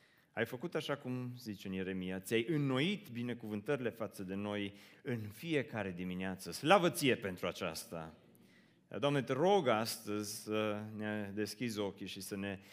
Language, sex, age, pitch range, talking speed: Romanian, male, 30-49, 100-150 Hz, 145 wpm